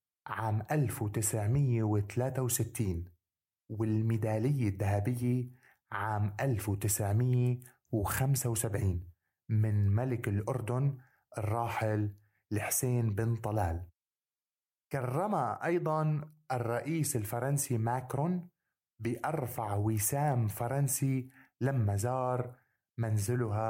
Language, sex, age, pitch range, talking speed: Arabic, male, 30-49, 110-135 Hz, 70 wpm